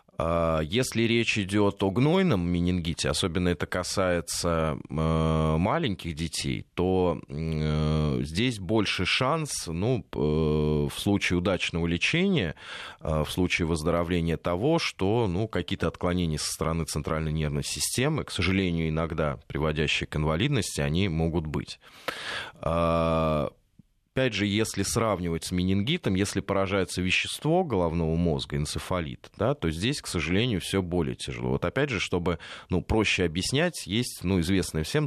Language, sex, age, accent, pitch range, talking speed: Russian, male, 20-39, native, 80-100 Hz, 125 wpm